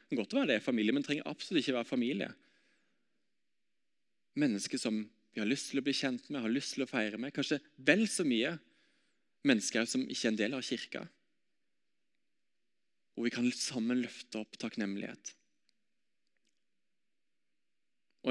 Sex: male